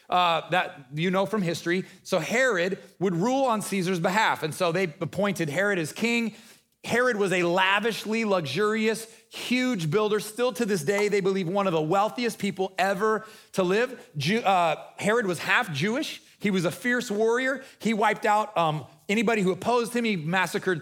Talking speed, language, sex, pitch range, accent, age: 175 wpm, English, male, 170-215 Hz, American, 30-49